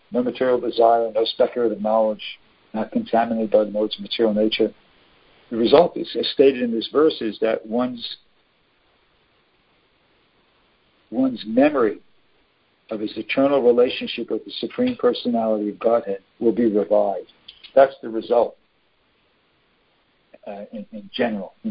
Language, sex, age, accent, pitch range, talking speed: English, male, 50-69, American, 110-160 Hz, 130 wpm